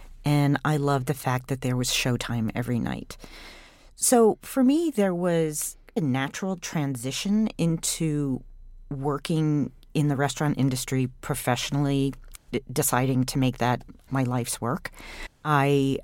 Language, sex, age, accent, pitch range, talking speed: English, female, 40-59, American, 125-155 Hz, 130 wpm